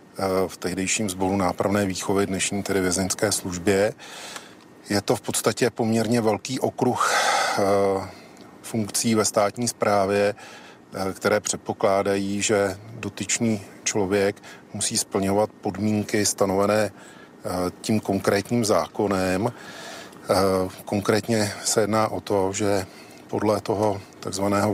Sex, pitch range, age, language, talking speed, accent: male, 100-110 Hz, 40-59, Czech, 100 wpm, native